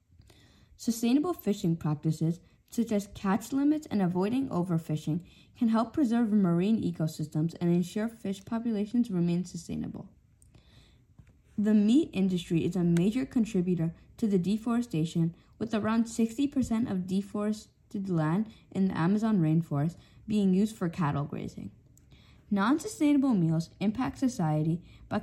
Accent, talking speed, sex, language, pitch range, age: American, 120 wpm, female, English, 165-230 Hz, 10-29